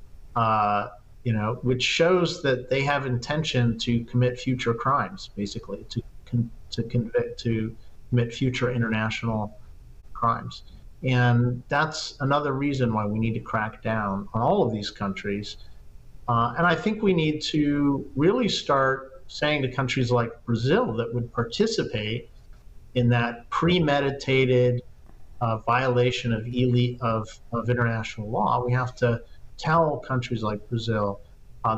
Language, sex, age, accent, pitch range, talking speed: English, male, 50-69, American, 110-125 Hz, 140 wpm